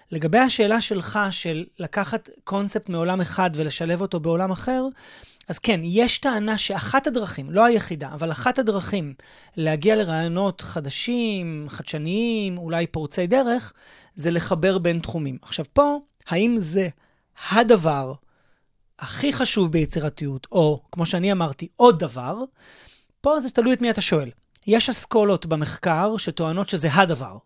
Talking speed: 135 wpm